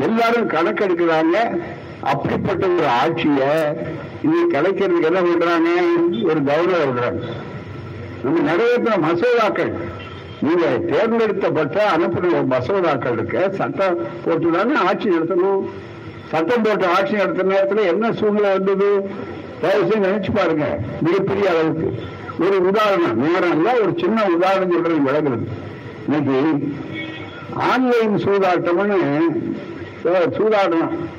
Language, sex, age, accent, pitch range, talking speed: Tamil, male, 60-79, native, 160-210 Hz, 85 wpm